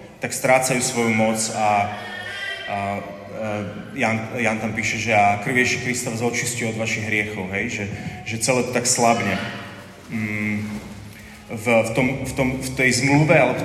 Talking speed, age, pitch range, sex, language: 165 wpm, 30-49, 105-130 Hz, male, Slovak